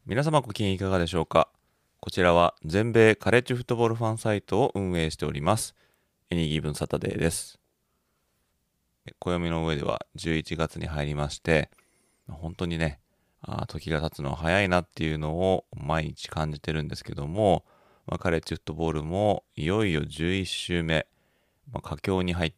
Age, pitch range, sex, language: 30-49, 80-100 Hz, male, Japanese